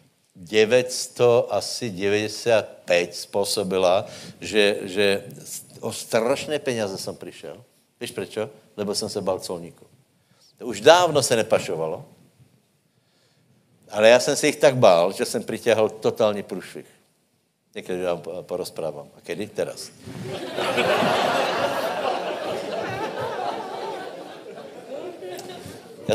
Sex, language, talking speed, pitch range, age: male, Slovak, 95 wpm, 95-120 Hz, 60-79